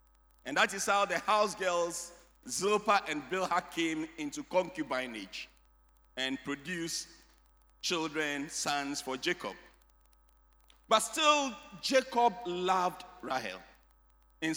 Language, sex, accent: English, male, Nigerian